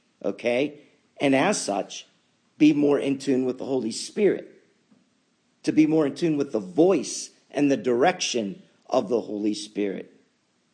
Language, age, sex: English, 50-69, male